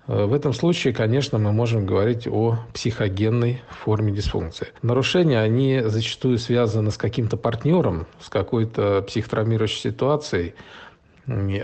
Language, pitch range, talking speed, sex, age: Russian, 105-120 Hz, 115 wpm, male, 40-59